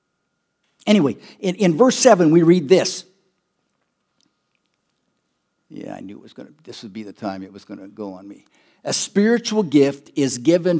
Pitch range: 135-190 Hz